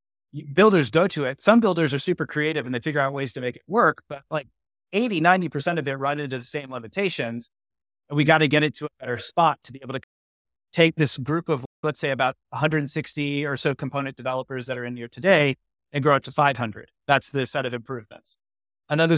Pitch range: 125-155 Hz